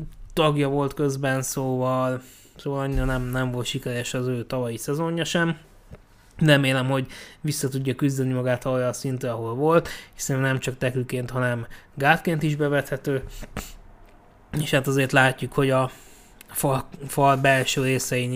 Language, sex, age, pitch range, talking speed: Hungarian, male, 20-39, 125-145 Hz, 140 wpm